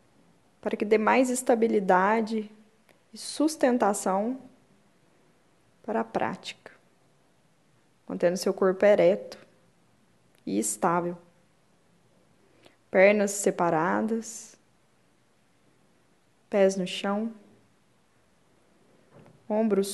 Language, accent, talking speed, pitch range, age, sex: Portuguese, Brazilian, 65 wpm, 195-240 Hz, 10-29, female